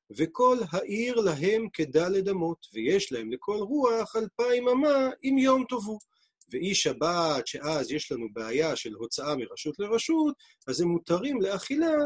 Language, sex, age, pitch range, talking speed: Hebrew, male, 40-59, 150-225 Hz, 140 wpm